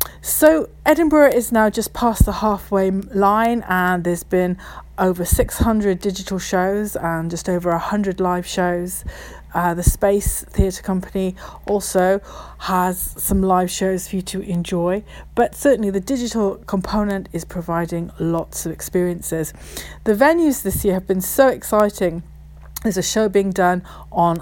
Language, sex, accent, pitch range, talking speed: English, female, British, 175-215 Hz, 145 wpm